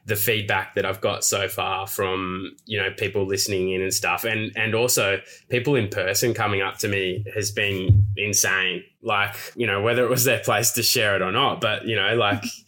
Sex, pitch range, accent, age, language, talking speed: male, 100-120 Hz, Australian, 20-39, English, 215 wpm